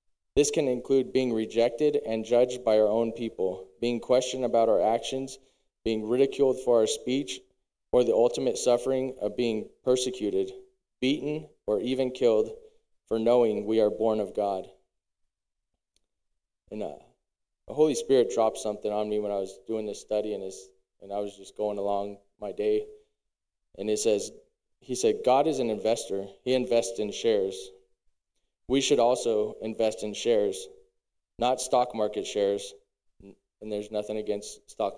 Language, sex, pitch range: English, male, 105-140 Hz